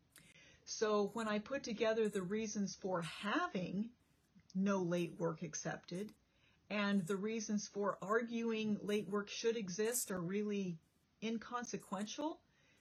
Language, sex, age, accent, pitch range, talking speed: English, female, 40-59, American, 185-245 Hz, 115 wpm